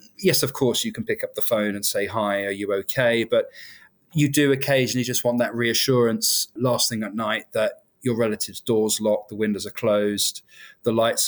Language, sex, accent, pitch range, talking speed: English, male, British, 105-120 Hz, 200 wpm